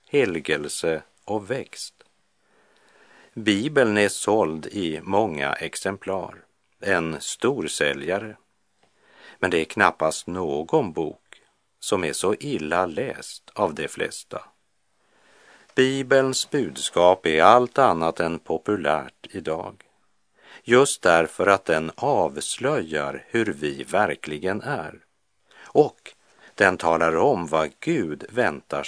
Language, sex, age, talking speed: Czech, male, 50-69, 105 wpm